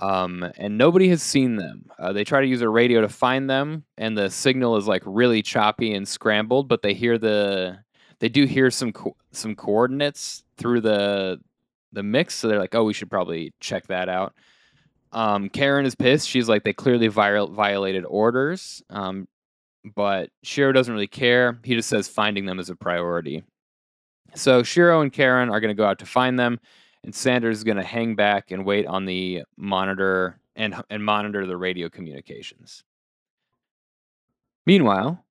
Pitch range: 95-120 Hz